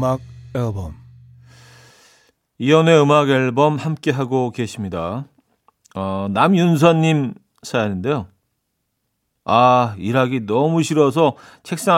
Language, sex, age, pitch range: Korean, male, 40-59, 120-155 Hz